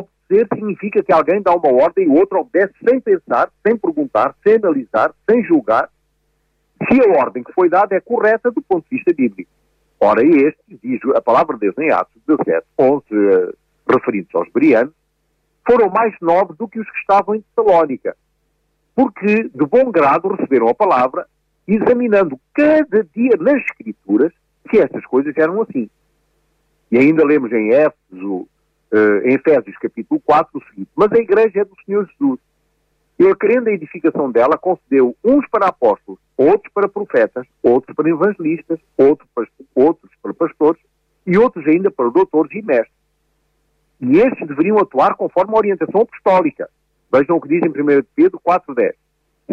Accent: Brazilian